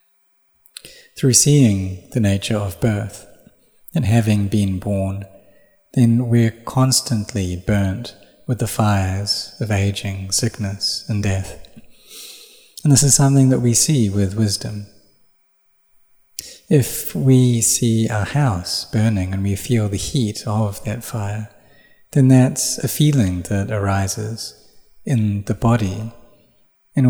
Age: 30-49